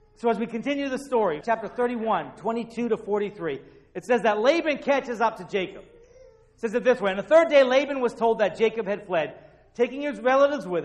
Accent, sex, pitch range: American, male, 195-250 Hz